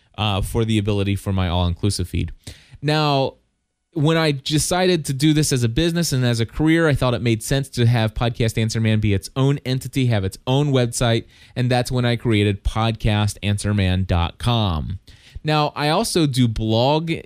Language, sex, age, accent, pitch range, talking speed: English, male, 20-39, American, 110-145 Hz, 175 wpm